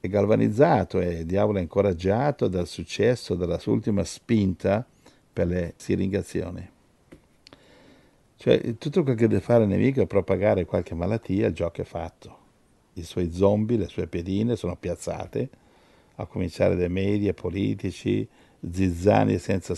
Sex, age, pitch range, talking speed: male, 50-69, 90-105 Hz, 145 wpm